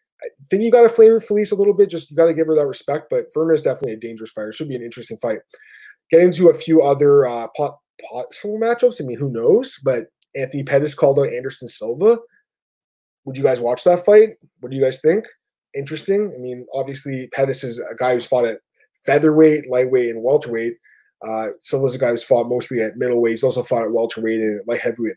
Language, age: English, 20-39